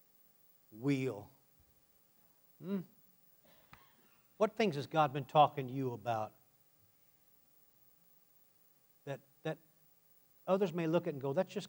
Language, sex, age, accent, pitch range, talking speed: English, male, 60-79, American, 115-170 Hz, 110 wpm